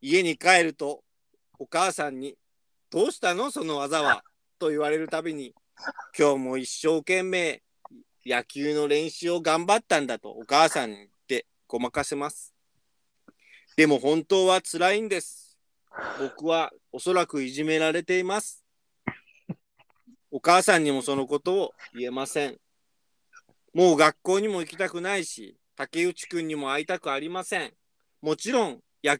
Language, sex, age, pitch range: Japanese, male, 40-59, 155-220 Hz